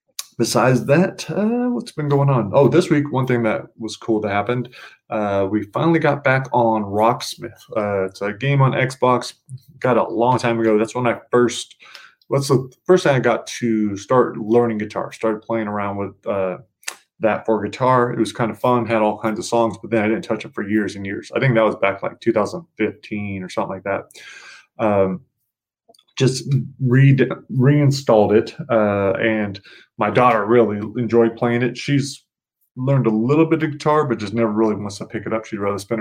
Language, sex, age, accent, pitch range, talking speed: English, male, 20-39, American, 105-125 Hz, 200 wpm